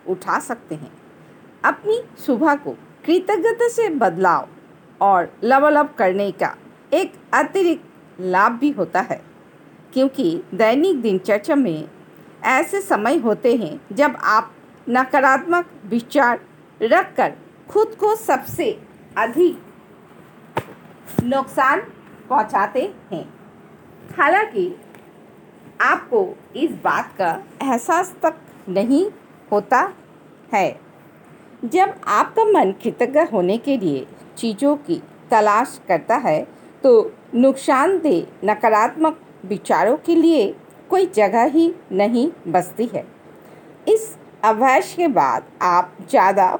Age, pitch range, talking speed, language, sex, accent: 50-69, 215-345 Hz, 105 wpm, Hindi, female, native